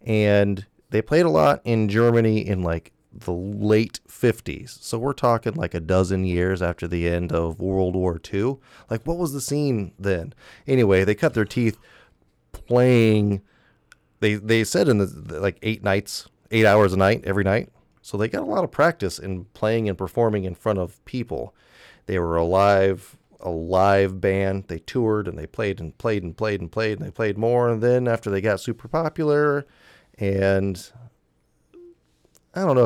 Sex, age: male, 30-49